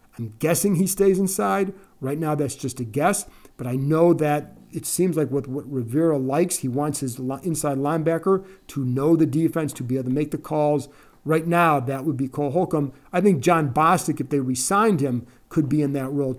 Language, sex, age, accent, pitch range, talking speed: English, male, 40-59, American, 135-165 Hz, 210 wpm